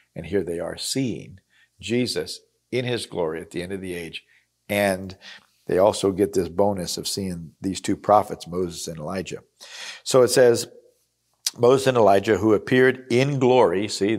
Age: 50-69